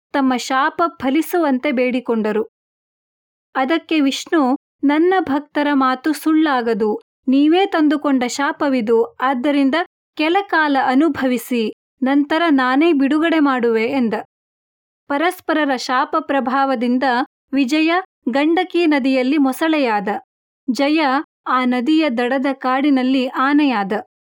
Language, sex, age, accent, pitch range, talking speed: Kannada, female, 30-49, native, 260-310 Hz, 85 wpm